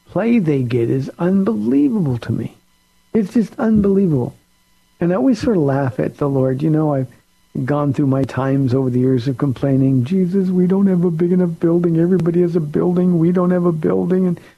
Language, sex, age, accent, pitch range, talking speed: English, male, 60-79, American, 135-175 Hz, 200 wpm